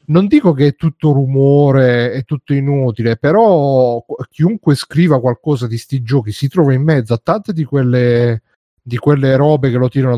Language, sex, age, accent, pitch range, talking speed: Italian, male, 40-59, native, 125-145 Hz, 175 wpm